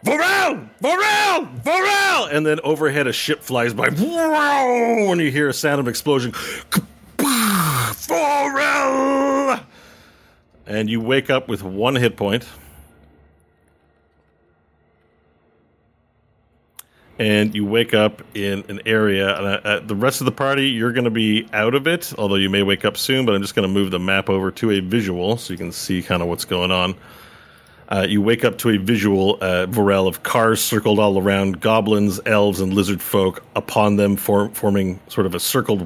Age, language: 40-59, English